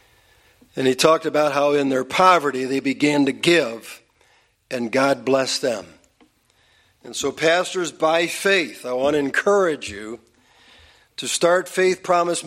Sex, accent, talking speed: male, American, 145 wpm